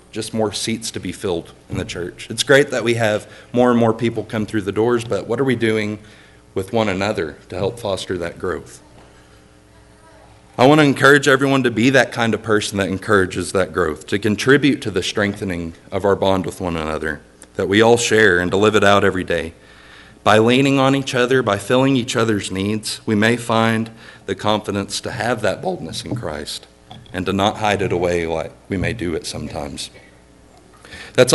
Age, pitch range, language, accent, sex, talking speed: 40-59, 95-115 Hz, English, American, male, 205 wpm